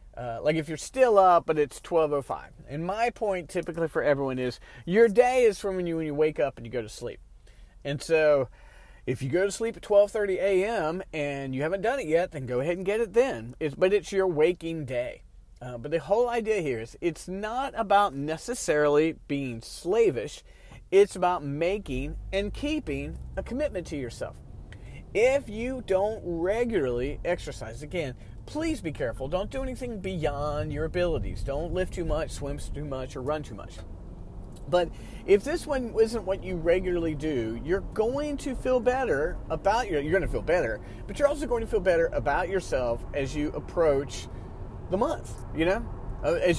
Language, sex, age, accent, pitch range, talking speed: English, male, 40-59, American, 140-225 Hz, 185 wpm